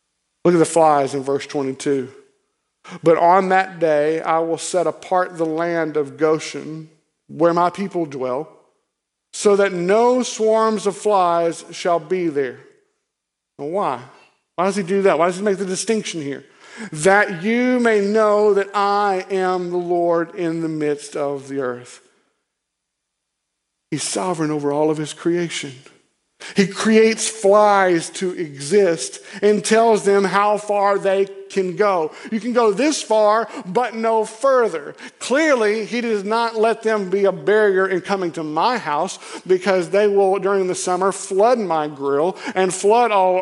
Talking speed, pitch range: 160 wpm, 165-210 Hz